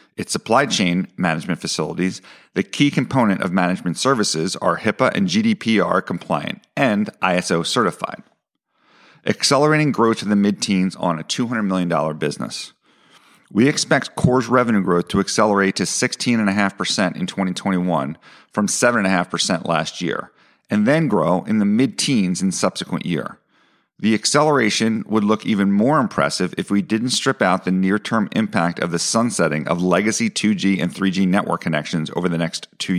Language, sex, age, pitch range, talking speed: English, male, 40-59, 90-115 Hz, 150 wpm